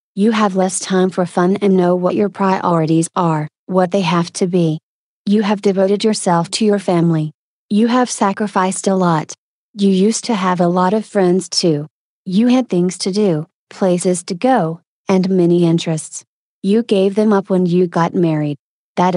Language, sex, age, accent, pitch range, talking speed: English, female, 30-49, American, 175-205 Hz, 180 wpm